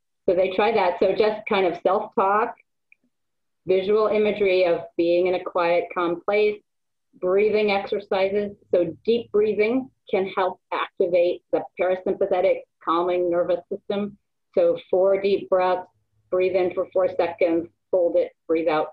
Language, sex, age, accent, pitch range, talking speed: English, female, 40-59, American, 180-230 Hz, 140 wpm